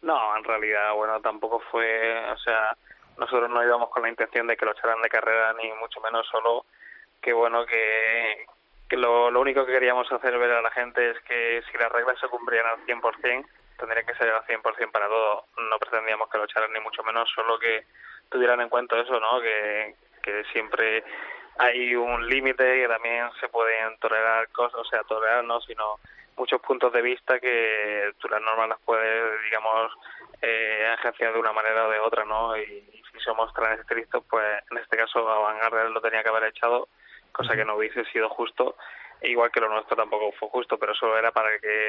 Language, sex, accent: Spanish, male, Spanish